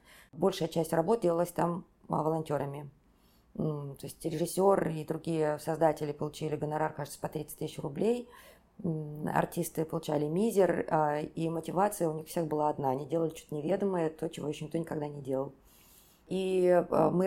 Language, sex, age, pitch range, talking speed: Russian, female, 20-39, 150-180 Hz, 145 wpm